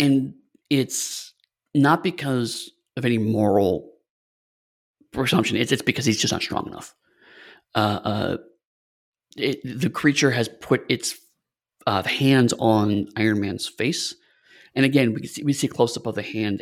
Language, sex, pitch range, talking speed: English, male, 110-140 Hz, 140 wpm